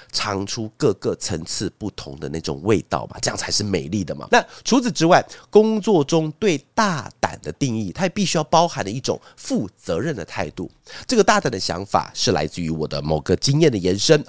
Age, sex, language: 30-49, male, Chinese